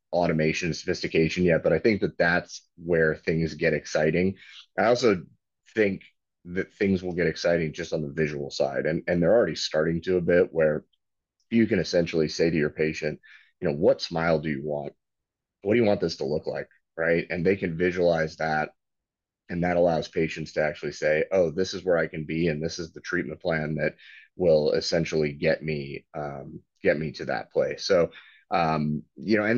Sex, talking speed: male, 200 wpm